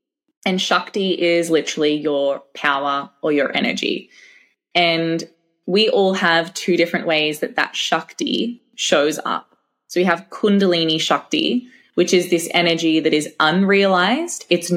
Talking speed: 140 wpm